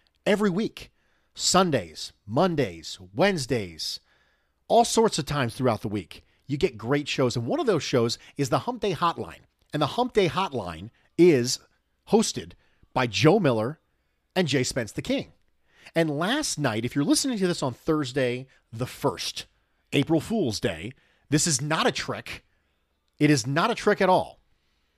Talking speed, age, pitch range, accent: 165 wpm, 40-59, 110-170 Hz, American